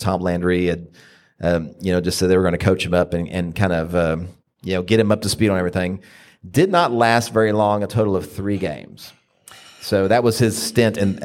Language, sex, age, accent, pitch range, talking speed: English, male, 40-59, American, 90-100 Hz, 240 wpm